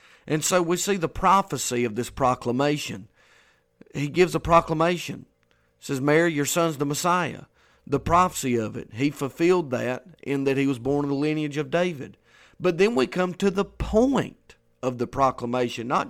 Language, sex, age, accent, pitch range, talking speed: English, male, 40-59, American, 135-180 Hz, 175 wpm